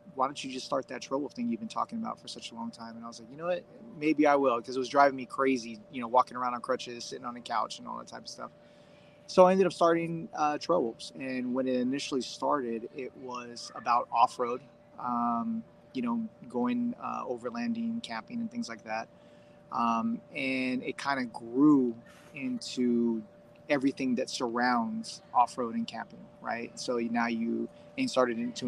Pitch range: 120-165 Hz